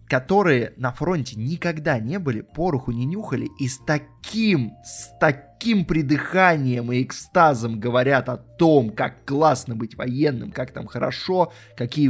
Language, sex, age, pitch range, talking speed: Russian, male, 20-39, 125-170 Hz, 140 wpm